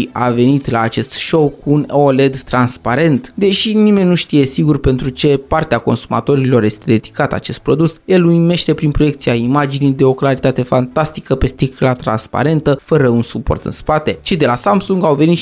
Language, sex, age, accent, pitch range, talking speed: Romanian, male, 20-39, native, 125-160 Hz, 175 wpm